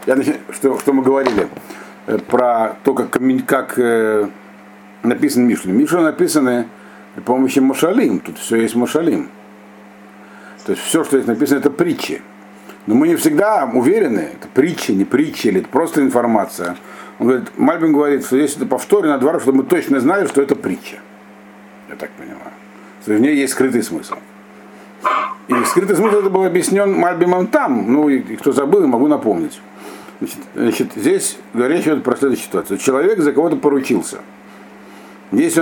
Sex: male